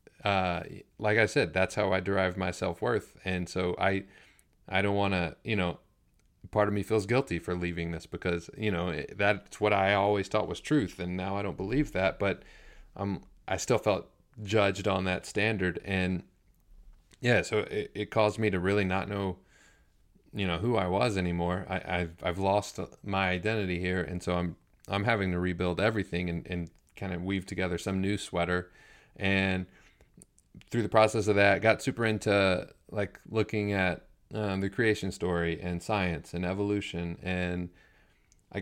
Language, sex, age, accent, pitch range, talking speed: English, male, 30-49, American, 90-100 Hz, 185 wpm